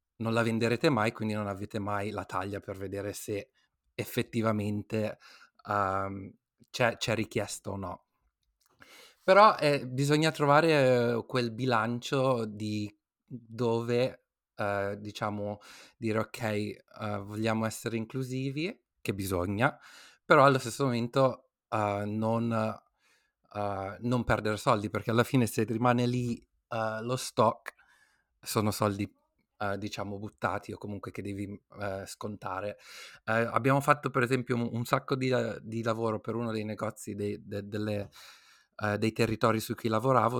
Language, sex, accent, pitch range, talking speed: Italian, male, native, 105-120 Hz, 115 wpm